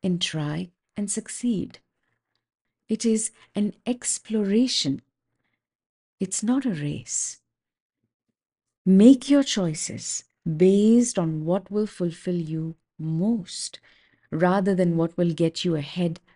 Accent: Indian